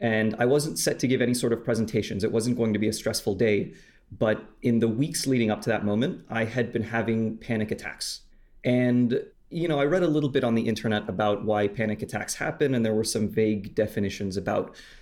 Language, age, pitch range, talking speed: English, 30-49, 105-120 Hz, 225 wpm